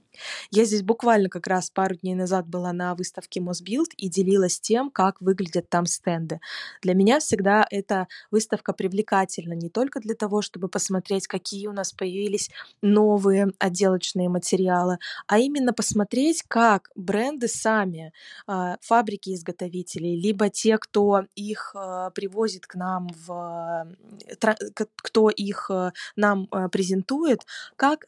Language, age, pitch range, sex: Russian, 20-39, 185-220 Hz, female